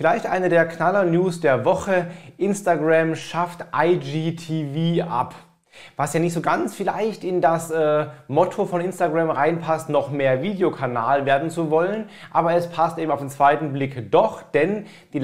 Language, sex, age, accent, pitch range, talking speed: German, male, 30-49, German, 140-175 Hz, 160 wpm